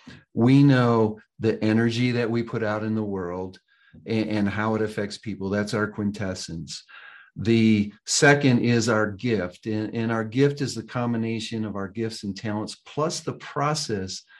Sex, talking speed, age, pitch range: male, 165 wpm, 50-69, 105-130 Hz